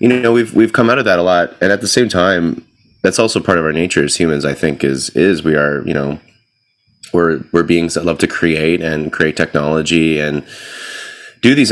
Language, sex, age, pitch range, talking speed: English, male, 30-49, 80-90 Hz, 225 wpm